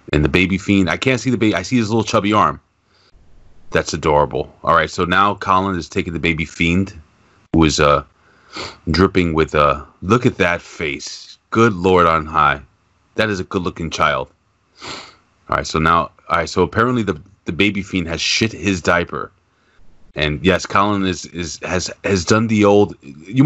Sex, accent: male, American